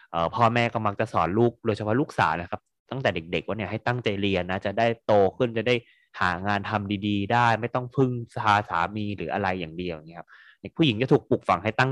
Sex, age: male, 20-39